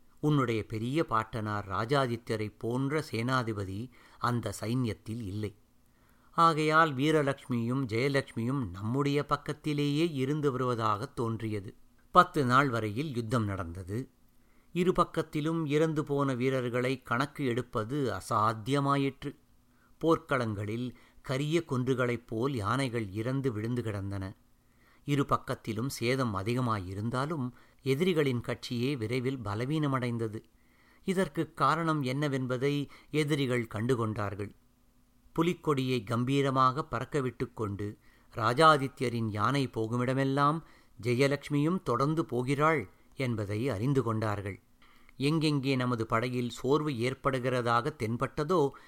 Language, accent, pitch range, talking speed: Tamil, native, 115-140 Hz, 85 wpm